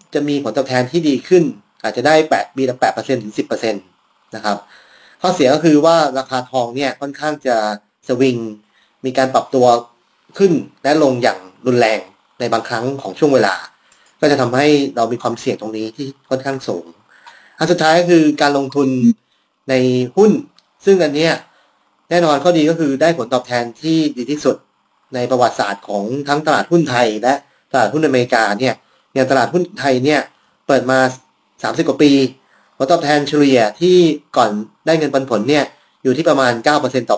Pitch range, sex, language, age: 120-150 Hz, male, Thai, 30-49